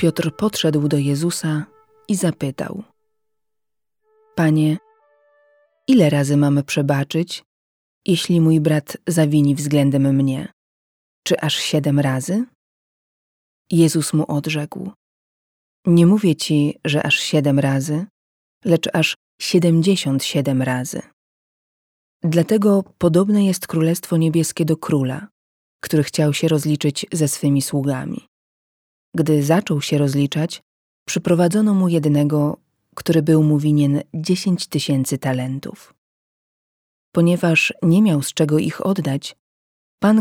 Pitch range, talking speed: 145-175 Hz, 105 wpm